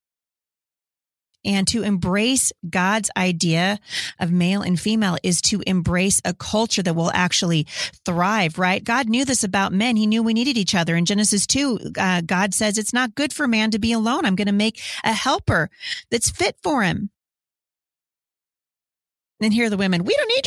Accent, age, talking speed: American, 30-49, 180 wpm